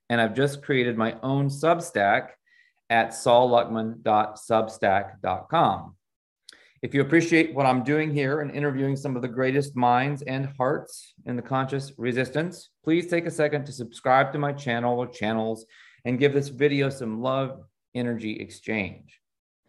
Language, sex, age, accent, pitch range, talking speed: English, male, 30-49, American, 110-140 Hz, 145 wpm